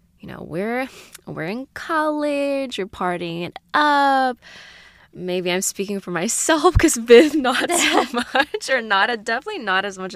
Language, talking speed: English, 140 wpm